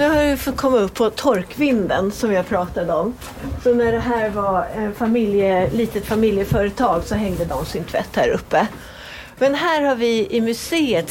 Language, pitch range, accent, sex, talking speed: Swedish, 175-215 Hz, native, female, 185 wpm